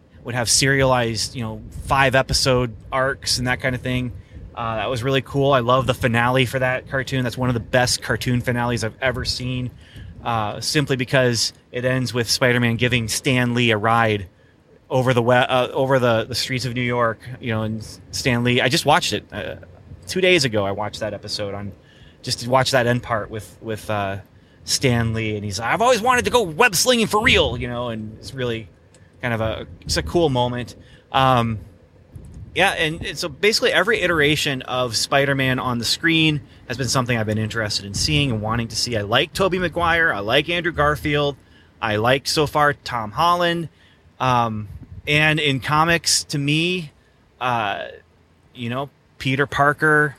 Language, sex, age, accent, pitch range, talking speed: English, male, 20-39, American, 110-135 Hz, 190 wpm